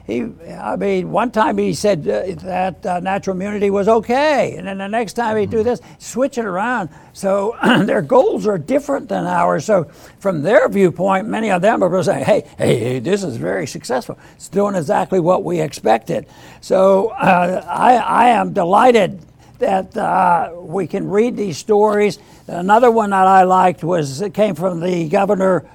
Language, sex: English, male